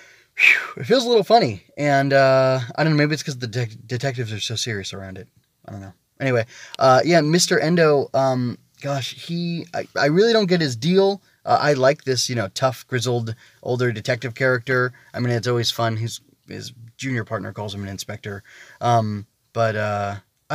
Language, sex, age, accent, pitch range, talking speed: English, male, 20-39, American, 110-140 Hz, 195 wpm